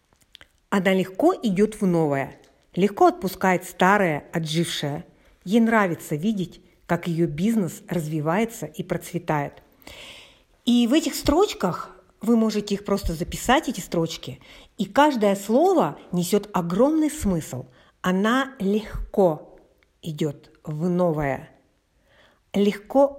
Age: 50-69